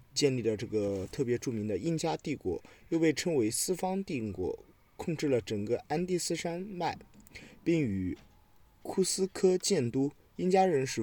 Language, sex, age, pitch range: Chinese, male, 20-39, 110-160 Hz